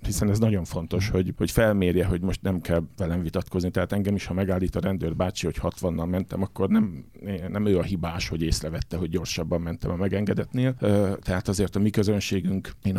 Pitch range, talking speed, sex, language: 90-100 Hz, 200 wpm, male, English